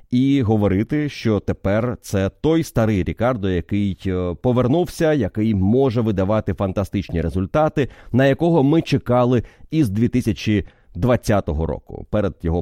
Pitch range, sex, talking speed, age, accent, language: 95-130 Hz, male, 120 wpm, 30-49, native, Ukrainian